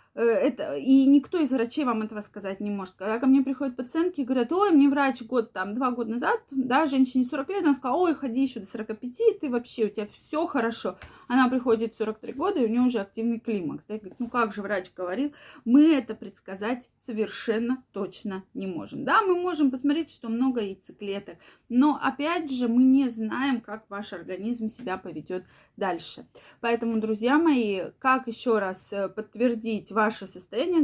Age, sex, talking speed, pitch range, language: 20-39, female, 180 wpm, 210-270 Hz, Russian